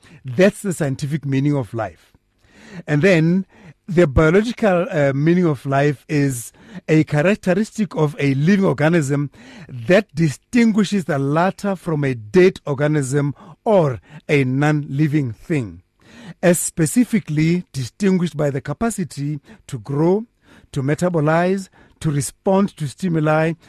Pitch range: 140-180 Hz